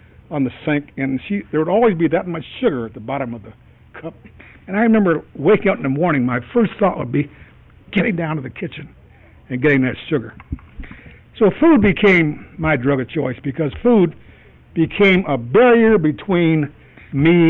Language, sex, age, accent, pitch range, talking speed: English, male, 60-79, American, 135-195 Hz, 185 wpm